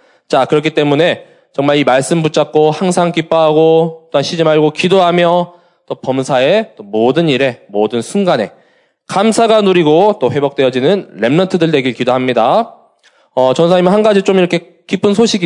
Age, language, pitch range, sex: 20-39, Korean, 125-180 Hz, male